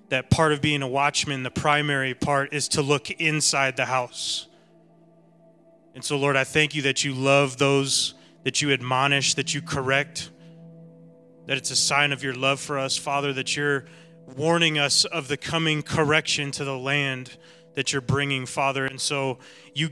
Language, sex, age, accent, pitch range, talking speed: English, male, 30-49, American, 135-165 Hz, 180 wpm